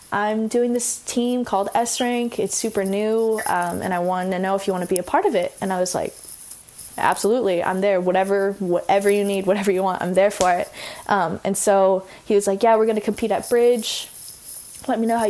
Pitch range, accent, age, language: 190-230 Hz, American, 10-29, English